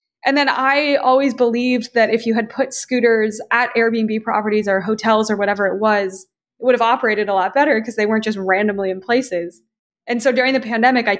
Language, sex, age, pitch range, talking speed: English, female, 20-39, 200-240 Hz, 215 wpm